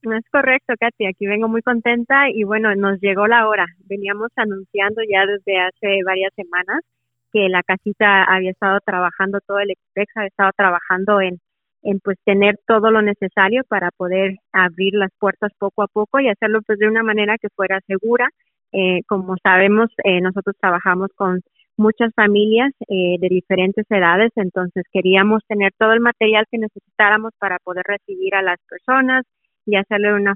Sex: female